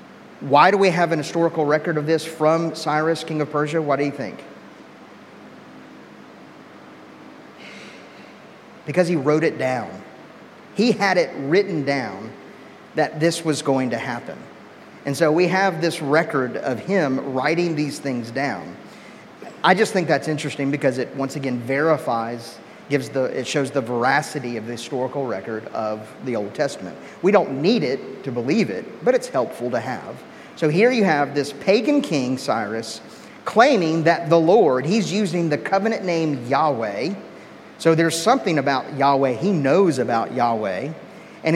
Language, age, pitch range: English, 40-59, 135-170 Hz